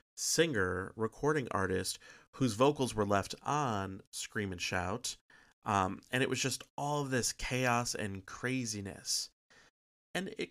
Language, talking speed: English, 135 wpm